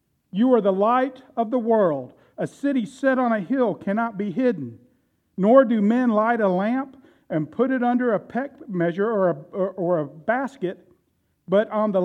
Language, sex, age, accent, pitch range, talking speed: English, male, 50-69, American, 175-235 Hz, 190 wpm